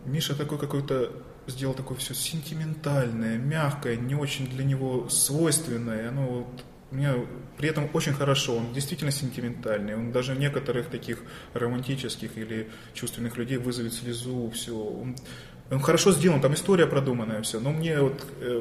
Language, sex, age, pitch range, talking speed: Russian, male, 20-39, 115-140 Hz, 150 wpm